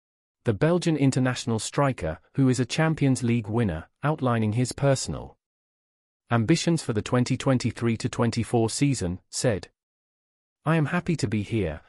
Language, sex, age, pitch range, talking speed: English, male, 40-59, 110-145 Hz, 130 wpm